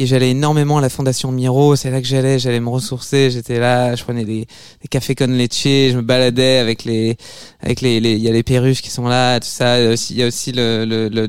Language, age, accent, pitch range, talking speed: French, 20-39, French, 125-150 Hz, 250 wpm